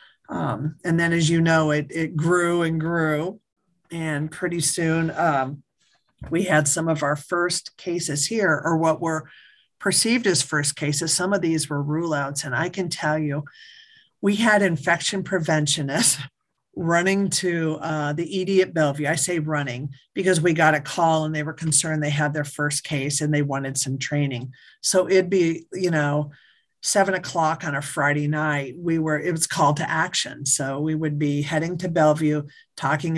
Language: English